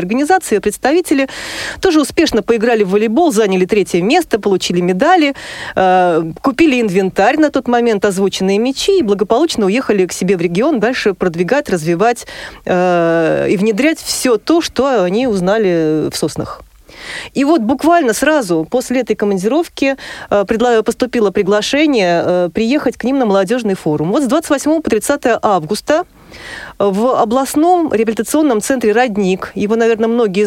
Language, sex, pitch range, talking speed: Russian, female, 195-265 Hz, 130 wpm